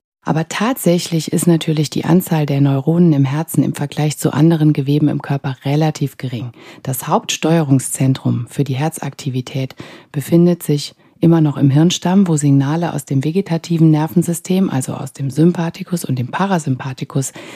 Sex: female